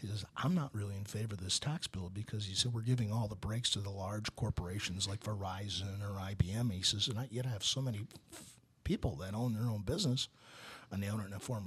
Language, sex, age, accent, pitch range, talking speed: English, male, 50-69, American, 100-120 Hz, 255 wpm